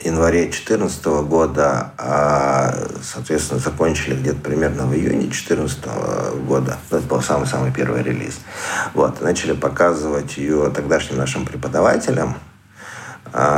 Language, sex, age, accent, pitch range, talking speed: Russian, male, 50-69, native, 65-85 Hz, 100 wpm